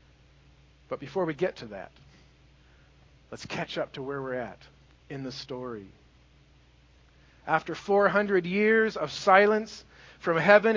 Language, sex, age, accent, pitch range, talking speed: English, male, 50-69, American, 135-190 Hz, 130 wpm